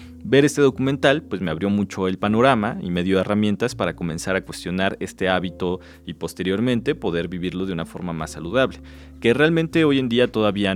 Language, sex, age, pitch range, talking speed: Spanish, male, 30-49, 90-120 Hz, 190 wpm